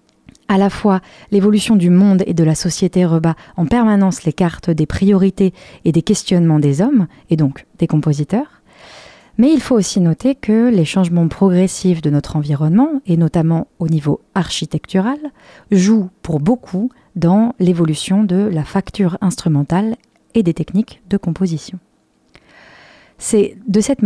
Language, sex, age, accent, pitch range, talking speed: French, female, 30-49, French, 160-210 Hz, 150 wpm